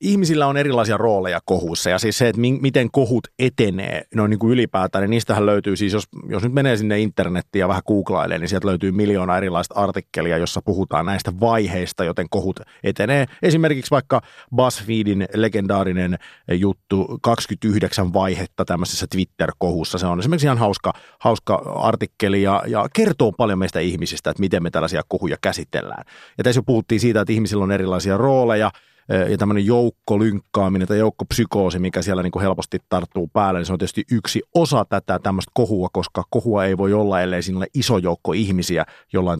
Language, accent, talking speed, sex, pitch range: Finnish, native, 170 wpm, male, 90-115 Hz